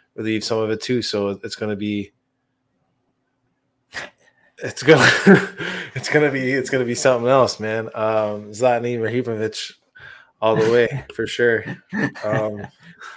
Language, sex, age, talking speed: English, male, 20-39, 130 wpm